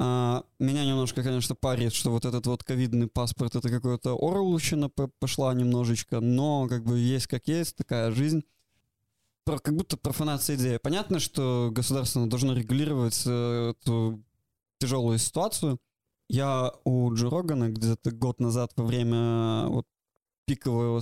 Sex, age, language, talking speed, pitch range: male, 20-39, Russian, 130 wpm, 120-145 Hz